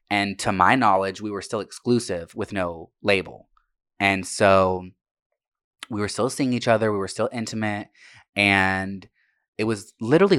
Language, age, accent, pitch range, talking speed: English, 20-39, American, 90-110 Hz, 155 wpm